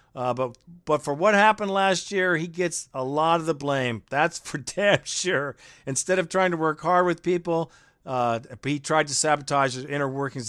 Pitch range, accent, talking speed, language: 130-180 Hz, American, 200 wpm, English